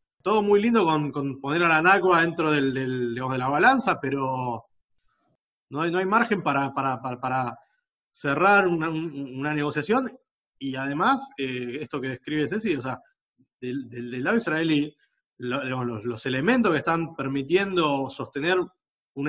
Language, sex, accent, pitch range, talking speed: Spanish, male, Argentinian, 135-190 Hz, 165 wpm